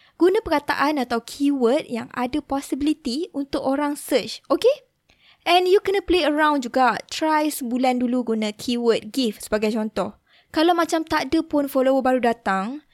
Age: 20-39